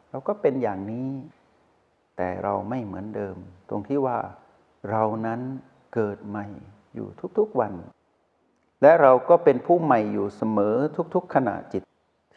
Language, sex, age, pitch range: Thai, male, 60-79, 105-135 Hz